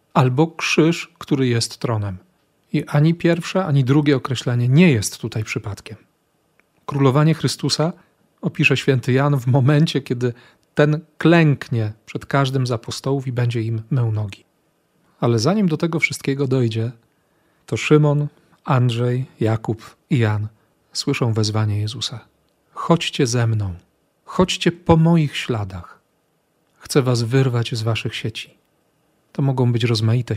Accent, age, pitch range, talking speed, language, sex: native, 40-59, 115-150 Hz, 130 wpm, Polish, male